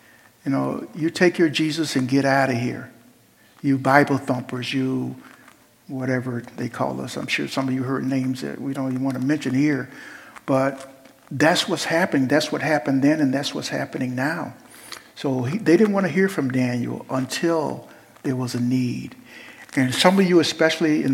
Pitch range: 130-160 Hz